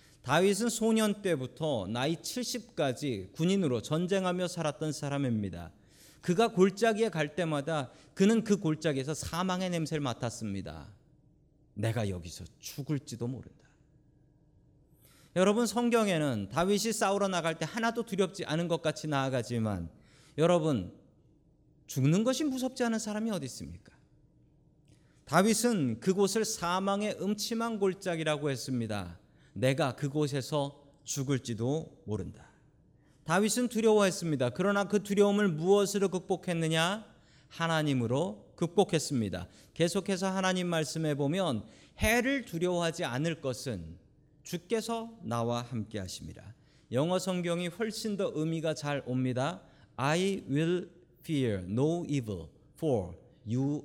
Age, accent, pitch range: 40-59, native, 130-190 Hz